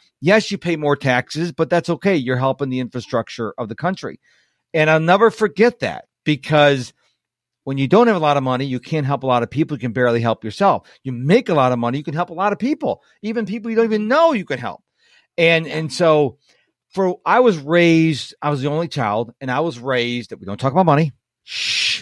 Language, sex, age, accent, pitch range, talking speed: English, male, 40-59, American, 125-180 Hz, 235 wpm